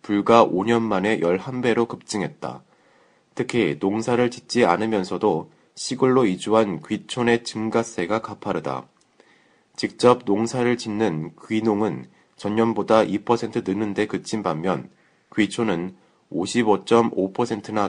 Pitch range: 100-115 Hz